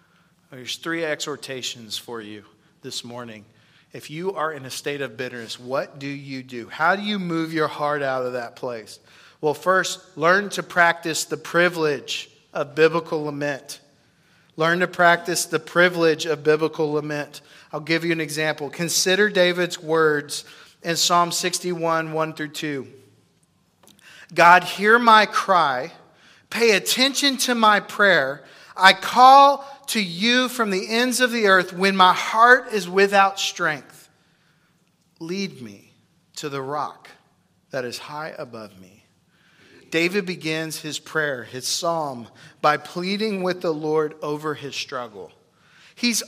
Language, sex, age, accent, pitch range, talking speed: English, male, 40-59, American, 150-190 Hz, 145 wpm